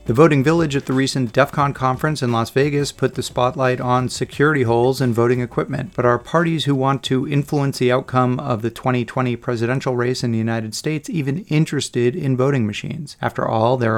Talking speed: 200 wpm